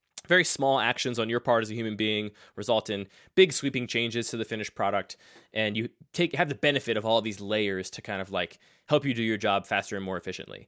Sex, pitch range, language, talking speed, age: male, 100-135 Hz, English, 240 wpm, 20-39